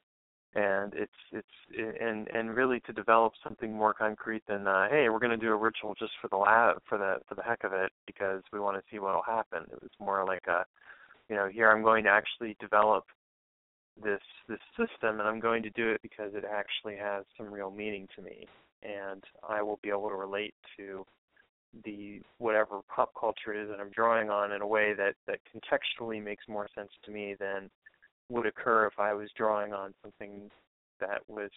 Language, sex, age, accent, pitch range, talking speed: English, male, 20-39, American, 100-115 Hz, 205 wpm